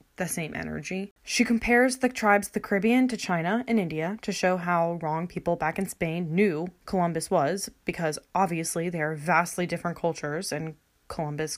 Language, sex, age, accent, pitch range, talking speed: English, female, 20-39, American, 160-200 Hz, 175 wpm